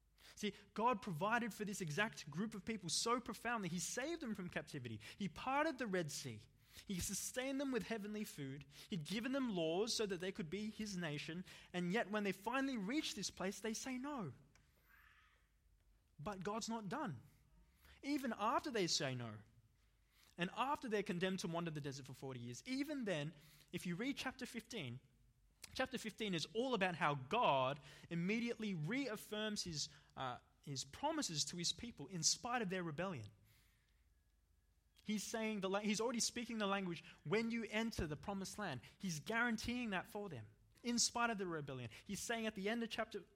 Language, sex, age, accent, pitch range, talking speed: English, male, 20-39, Australian, 140-220 Hz, 180 wpm